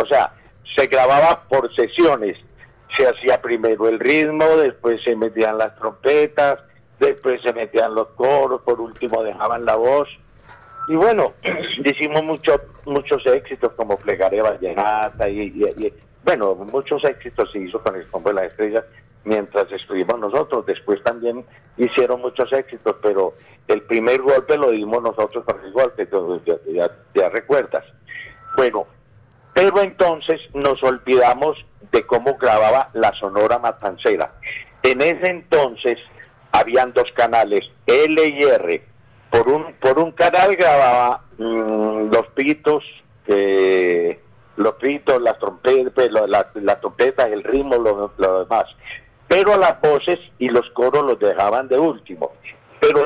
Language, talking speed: Spanish, 145 wpm